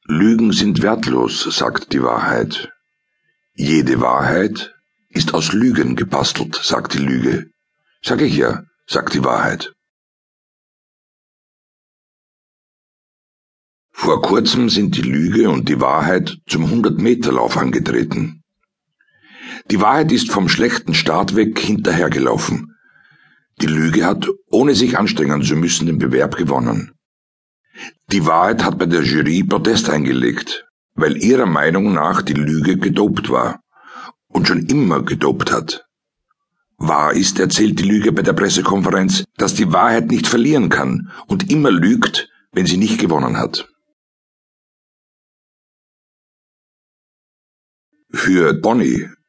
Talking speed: 115 wpm